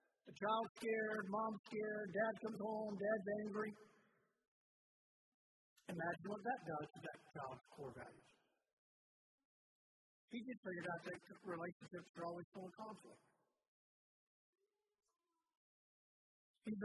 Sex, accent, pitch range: male, American, 175-225 Hz